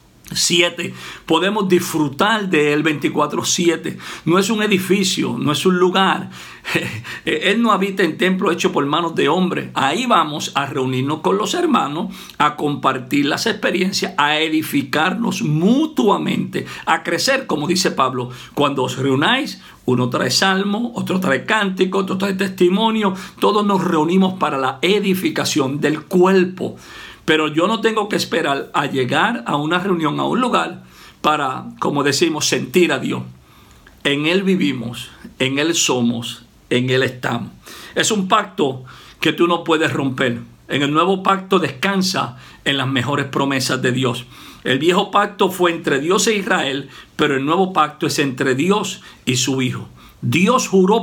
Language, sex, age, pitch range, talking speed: English, male, 60-79, 135-190 Hz, 155 wpm